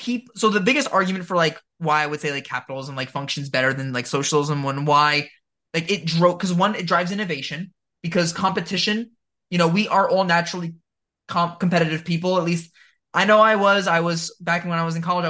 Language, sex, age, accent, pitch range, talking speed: English, male, 20-39, American, 160-195 Hz, 210 wpm